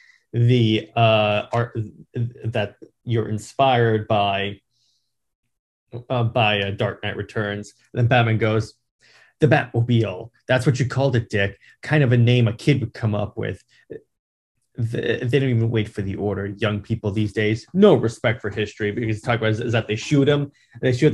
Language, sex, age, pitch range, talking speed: English, male, 30-49, 110-130 Hz, 180 wpm